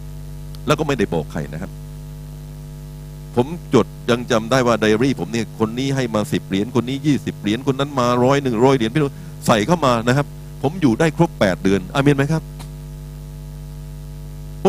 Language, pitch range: Thai, 135-165 Hz